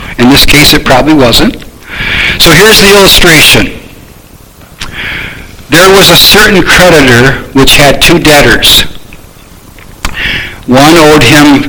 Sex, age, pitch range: male, 60-79, 130-160 Hz